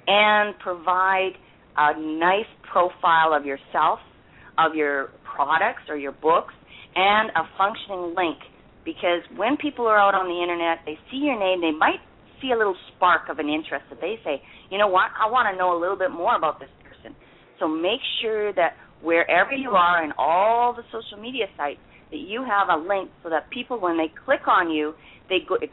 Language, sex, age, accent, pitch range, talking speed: English, female, 40-59, American, 165-215 Hz, 195 wpm